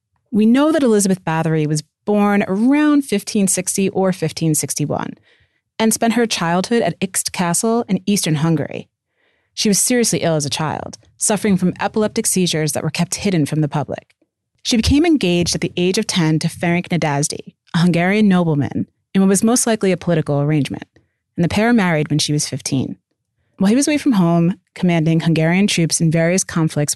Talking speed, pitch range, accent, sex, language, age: 180 wpm, 155-205 Hz, American, female, English, 30-49